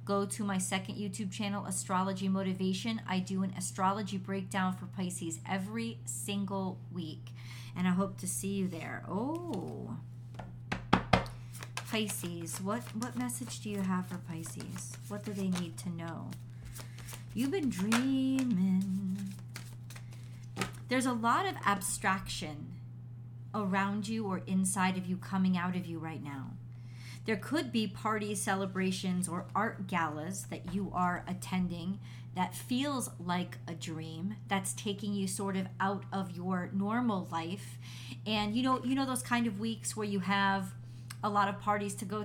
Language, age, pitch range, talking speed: English, 30-49, 120-195 Hz, 150 wpm